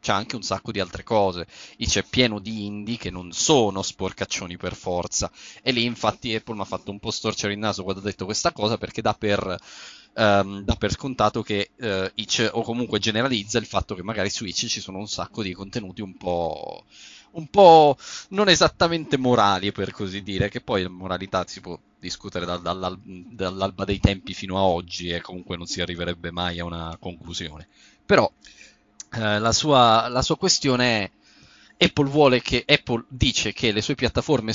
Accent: native